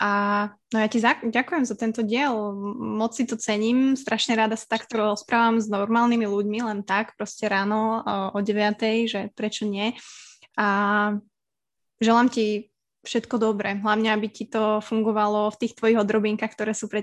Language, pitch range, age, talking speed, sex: Slovak, 205-225 Hz, 20-39, 170 wpm, female